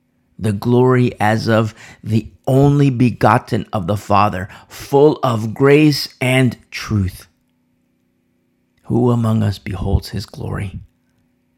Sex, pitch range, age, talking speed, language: male, 110-180 Hz, 40-59, 110 wpm, English